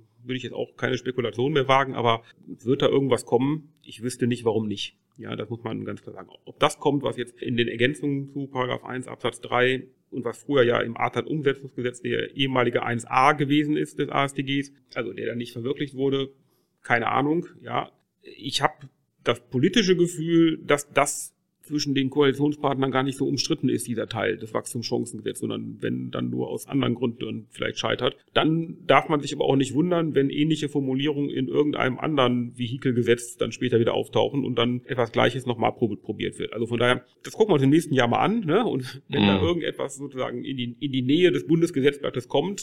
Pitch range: 120-145 Hz